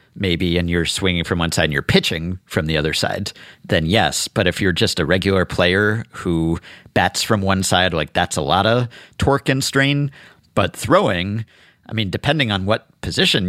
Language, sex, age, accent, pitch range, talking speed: English, male, 50-69, American, 90-115 Hz, 195 wpm